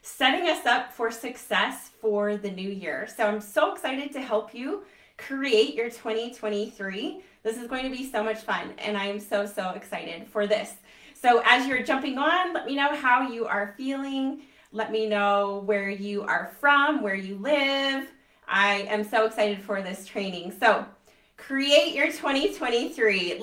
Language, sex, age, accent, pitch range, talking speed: English, female, 30-49, American, 205-255 Hz, 175 wpm